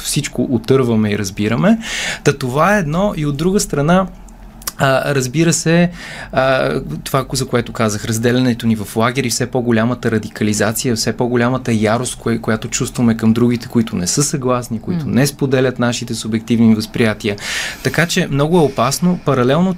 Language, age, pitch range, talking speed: Bulgarian, 30-49, 115-155 Hz, 155 wpm